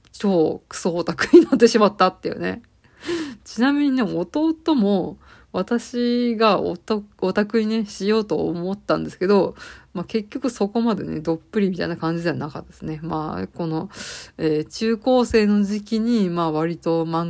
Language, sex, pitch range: Japanese, female, 170-215 Hz